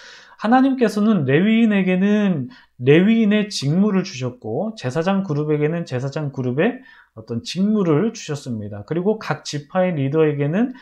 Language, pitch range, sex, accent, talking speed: English, 135-200 Hz, male, Korean, 90 wpm